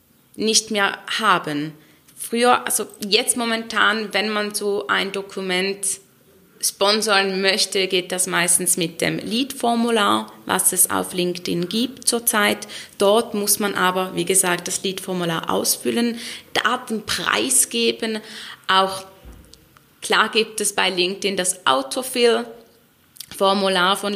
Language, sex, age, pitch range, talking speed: German, female, 20-39, 175-200 Hz, 115 wpm